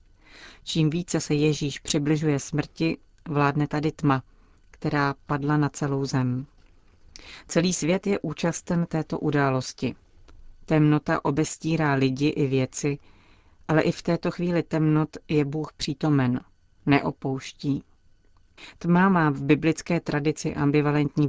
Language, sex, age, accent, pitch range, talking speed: Czech, female, 40-59, native, 135-155 Hz, 115 wpm